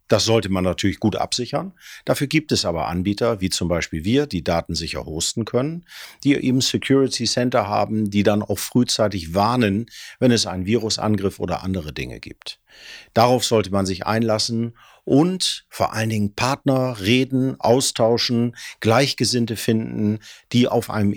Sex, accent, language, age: male, German, German, 50-69